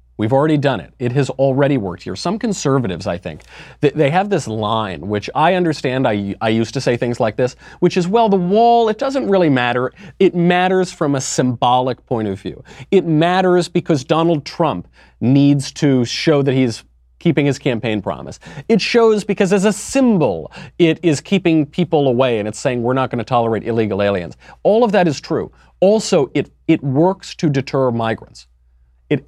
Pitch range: 110-165 Hz